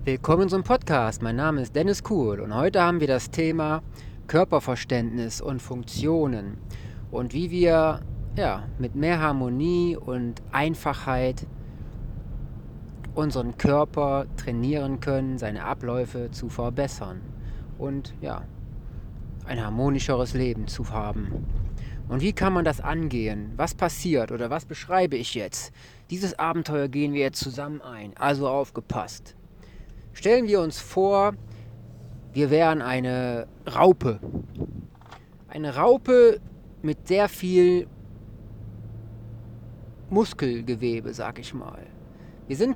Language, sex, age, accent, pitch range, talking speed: German, male, 30-49, German, 120-170 Hz, 115 wpm